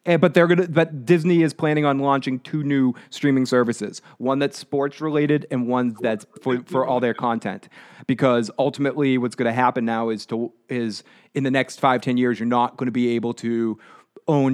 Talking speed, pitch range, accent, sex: 210 wpm, 125-150 Hz, American, male